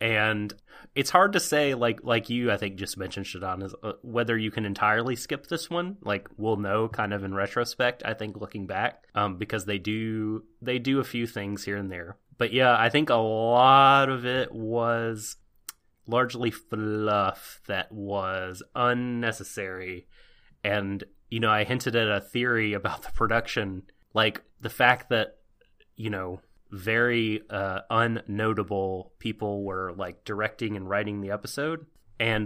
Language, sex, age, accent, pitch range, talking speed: English, male, 30-49, American, 100-120 Hz, 160 wpm